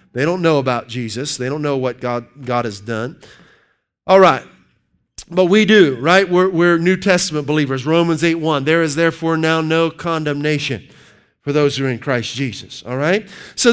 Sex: male